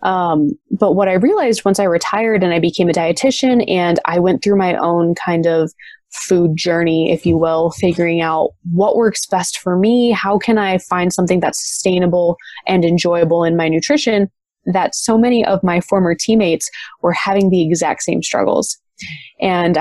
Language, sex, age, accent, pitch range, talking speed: English, female, 20-39, American, 170-215 Hz, 180 wpm